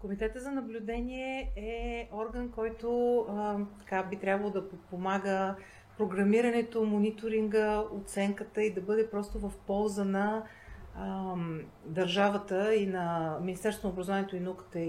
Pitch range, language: 180-220 Hz, Bulgarian